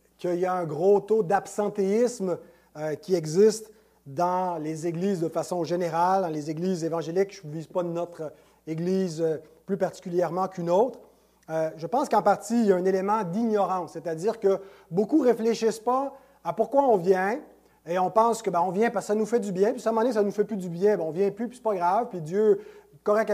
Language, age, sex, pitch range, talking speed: French, 30-49, male, 180-225 Hz, 240 wpm